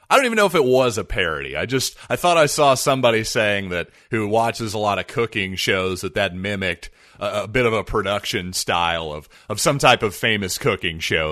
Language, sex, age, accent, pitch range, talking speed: English, male, 40-59, American, 105-135 Hz, 230 wpm